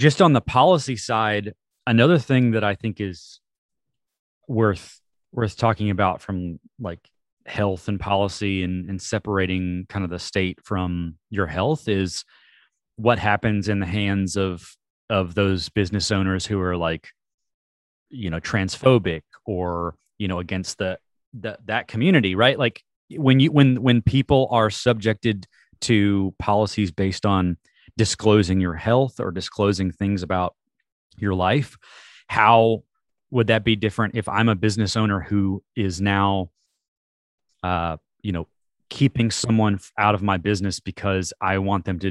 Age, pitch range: 30-49, 95-115 Hz